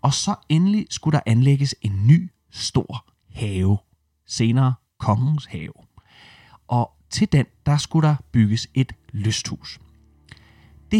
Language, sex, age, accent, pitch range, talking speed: Danish, male, 30-49, native, 105-140 Hz, 125 wpm